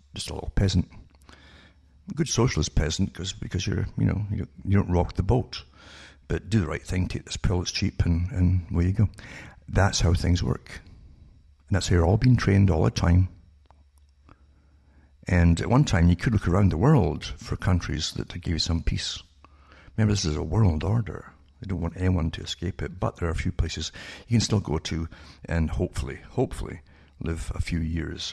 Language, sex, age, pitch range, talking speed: English, male, 60-79, 75-95 Hz, 200 wpm